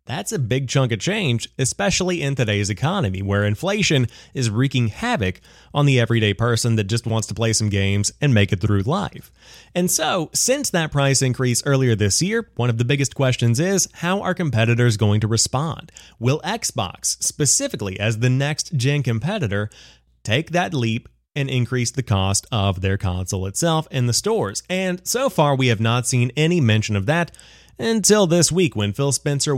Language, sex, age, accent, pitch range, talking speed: English, male, 30-49, American, 110-155 Hz, 185 wpm